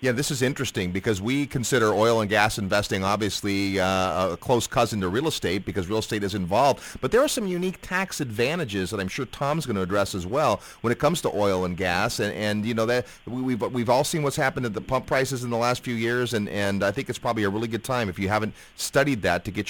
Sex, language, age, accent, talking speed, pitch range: male, English, 30-49, American, 260 wpm, 100-135 Hz